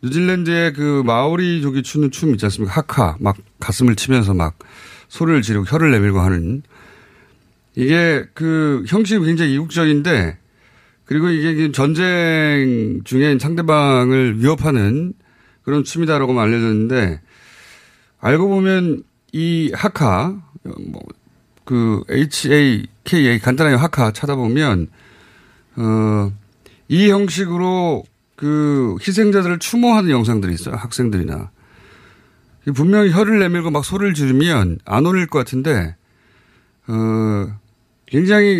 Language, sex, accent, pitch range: Korean, male, native, 110-160 Hz